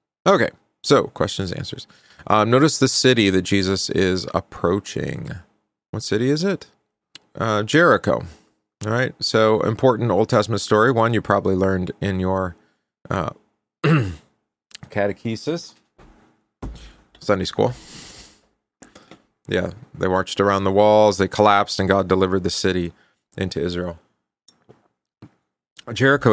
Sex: male